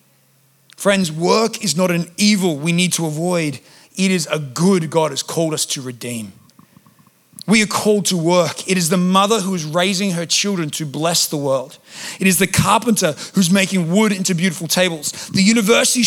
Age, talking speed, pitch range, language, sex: 30-49, 185 wpm, 170-220 Hz, English, male